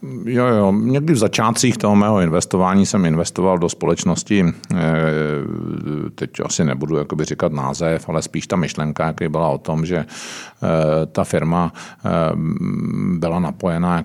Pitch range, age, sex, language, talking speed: 80-90 Hz, 50-69, male, Czech, 130 wpm